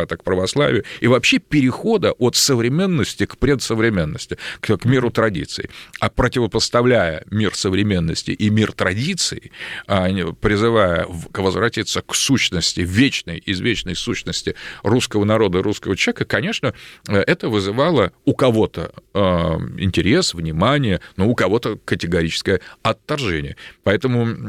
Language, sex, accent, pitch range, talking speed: Russian, male, native, 95-120 Hz, 105 wpm